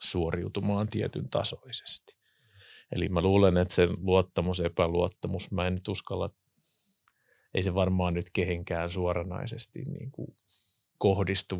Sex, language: male, Finnish